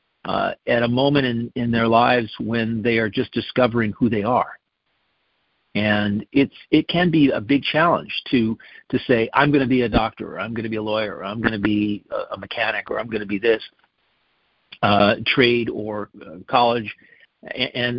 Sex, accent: male, American